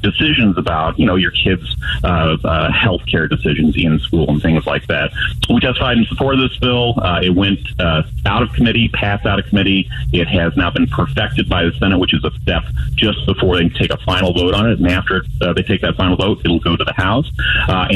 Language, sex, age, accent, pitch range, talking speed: English, male, 30-49, American, 85-110 Hz, 235 wpm